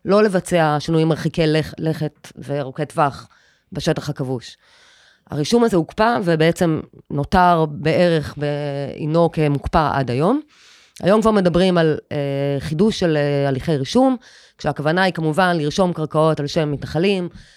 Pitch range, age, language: 150-180 Hz, 20-39, Hebrew